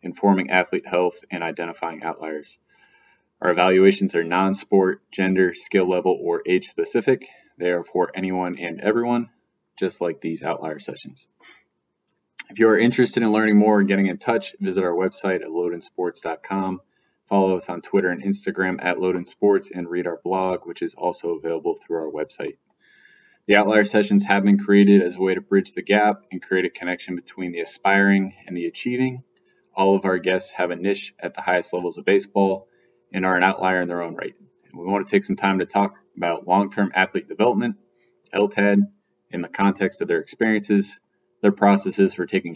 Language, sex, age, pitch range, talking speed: English, male, 20-39, 90-105 Hz, 185 wpm